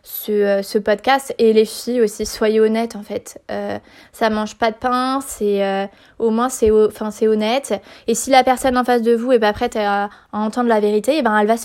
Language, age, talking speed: French, 20-39, 235 wpm